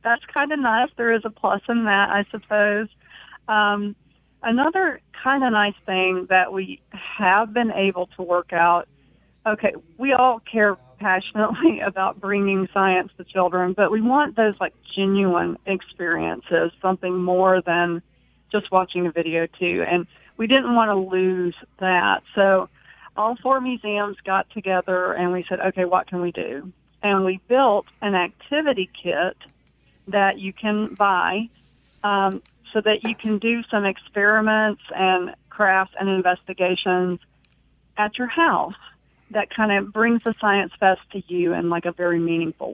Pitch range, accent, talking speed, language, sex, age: 180-215 Hz, American, 155 wpm, English, female, 40-59